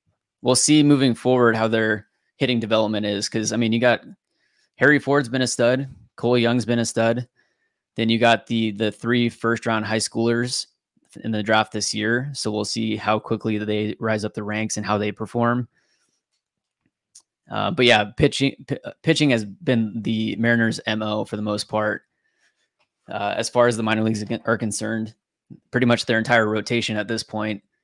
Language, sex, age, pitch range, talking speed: English, male, 20-39, 110-125 Hz, 185 wpm